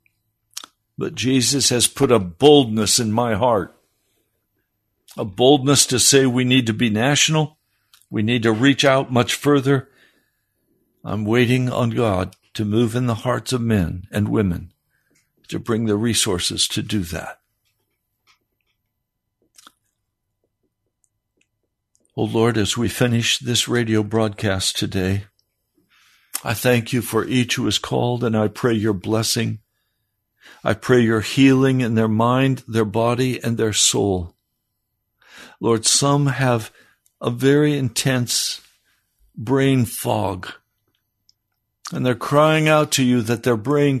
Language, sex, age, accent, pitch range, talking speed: English, male, 60-79, American, 110-130 Hz, 130 wpm